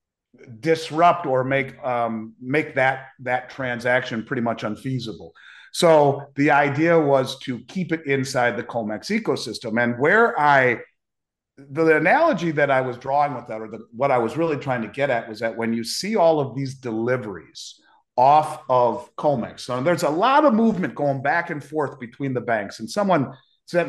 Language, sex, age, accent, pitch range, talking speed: English, male, 40-59, American, 120-170 Hz, 180 wpm